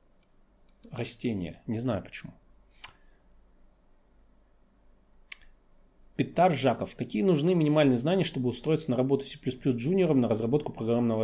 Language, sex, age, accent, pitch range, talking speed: Russian, male, 30-49, native, 110-155 Hz, 100 wpm